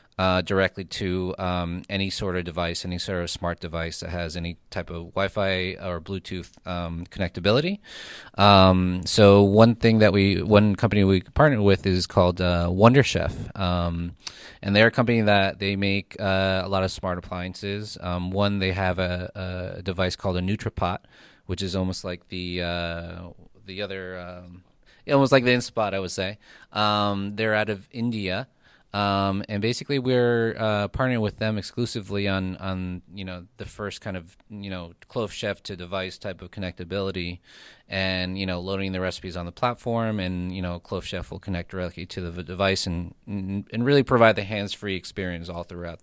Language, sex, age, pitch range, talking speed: English, male, 20-39, 90-105 Hz, 185 wpm